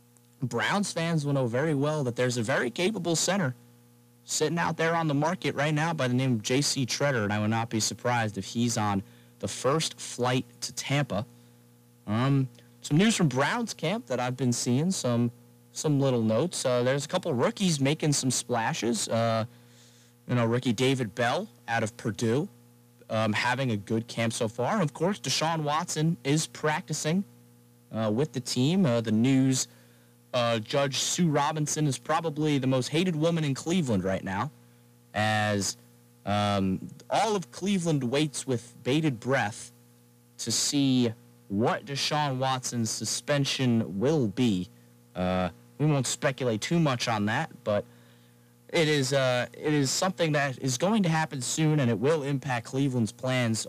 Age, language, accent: 30-49, English, American